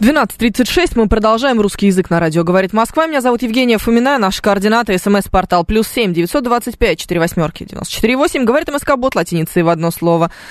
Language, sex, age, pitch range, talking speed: Russian, female, 20-39, 170-235 Hz, 170 wpm